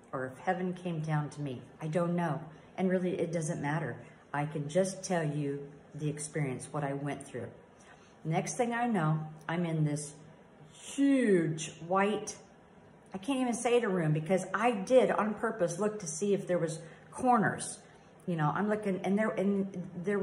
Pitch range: 155-205 Hz